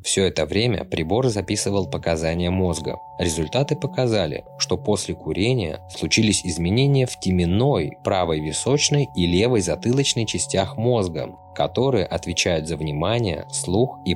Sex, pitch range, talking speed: male, 85-120 Hz, 125 wpm